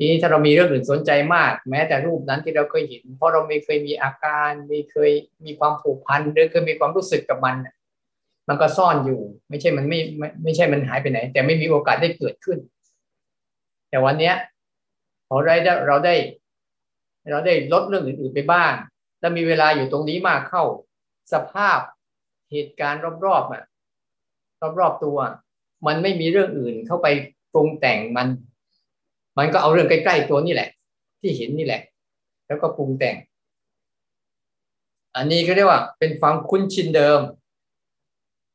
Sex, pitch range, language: male, 140-170 Hz, Thai